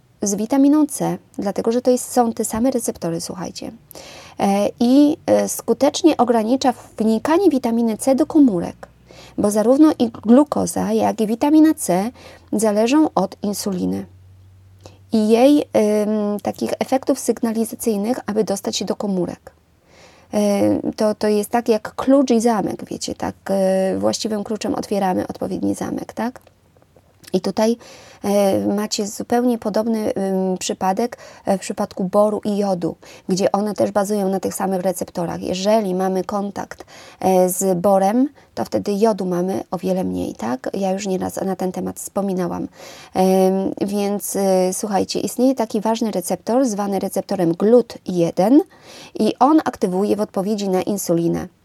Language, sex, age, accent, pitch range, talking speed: English, female, 30-49, Polish, 190-235 Hz, 130 wpm